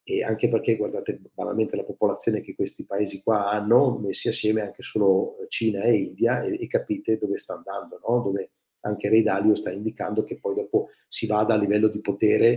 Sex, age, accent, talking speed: male, 40-59, native, 195 wpm